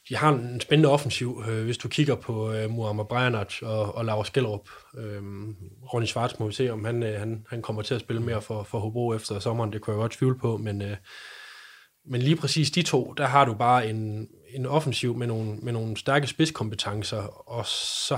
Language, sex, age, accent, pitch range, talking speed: Danish, male, 20-39, native, 110-130 Hz, 215 wpm